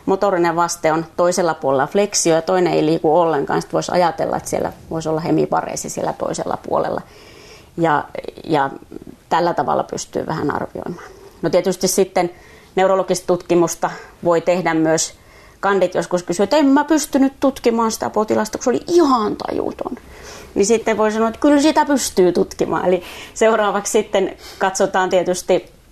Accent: native